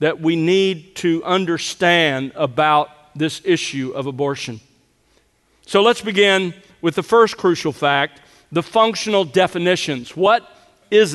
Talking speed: 125 wpm